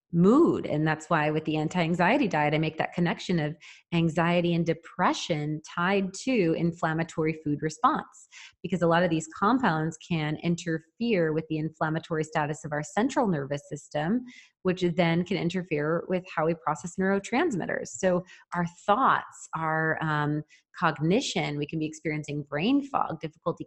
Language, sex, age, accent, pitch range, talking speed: English, female, 30-49, American, 155-180 Hz, 150 wpm